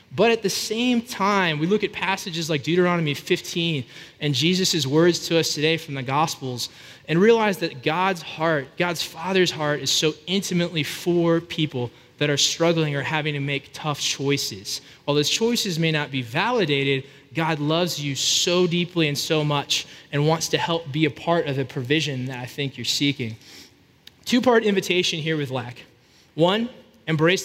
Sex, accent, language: male, American, English